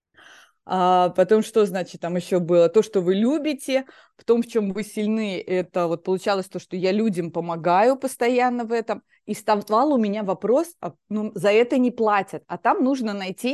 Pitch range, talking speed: 185-225 Hz, 190 wpm